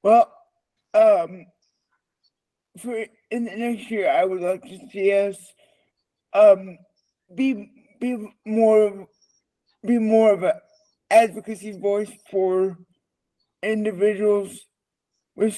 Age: 60-79